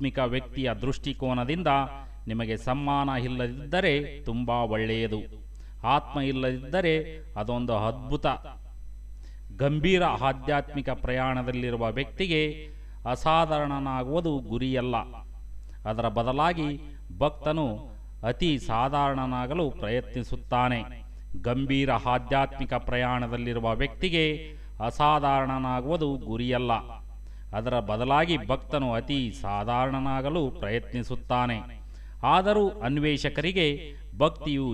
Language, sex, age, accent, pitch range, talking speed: Kannada, male, 30-49, native, 120-145 Hz, 65 wpm